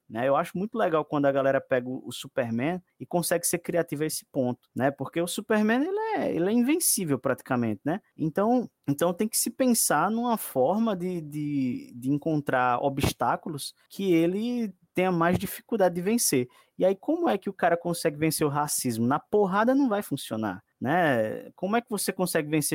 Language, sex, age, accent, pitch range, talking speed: Portuguese, male, 20-39, Brazilian, 135-200 Hz, 190 wpm